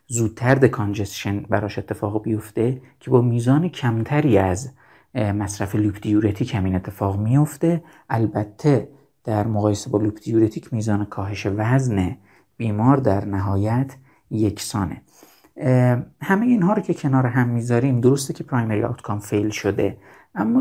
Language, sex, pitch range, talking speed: Persian, male, 105-135 Hz, 130 wpm